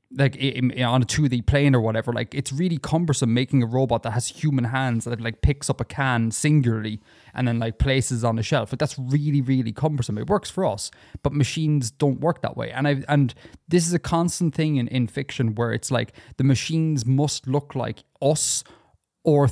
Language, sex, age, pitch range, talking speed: English, male, 20-39, 120-145 Hz, 220 wpm